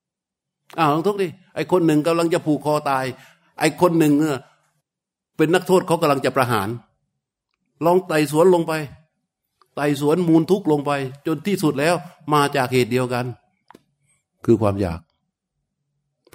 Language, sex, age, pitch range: Thai, male, 60-79, 125-160 Hz